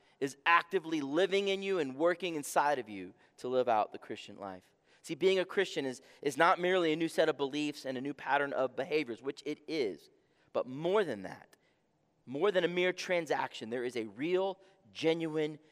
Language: English